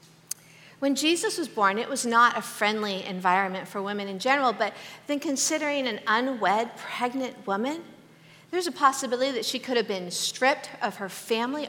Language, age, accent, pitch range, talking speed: English, 50-69, American, 210-285 Hz, 170 wpm